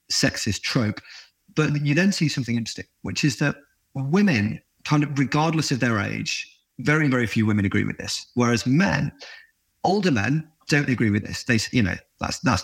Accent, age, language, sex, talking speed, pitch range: British, 30-49, English, male, 180 wpm, 115-140 Hz